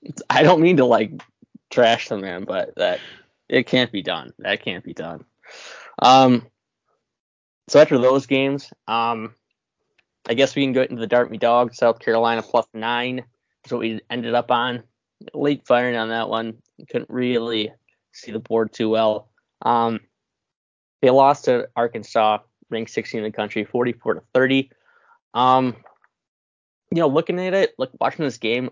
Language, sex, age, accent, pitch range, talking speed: English, male, 20-39, American, 110-125 Hz, 165 wpm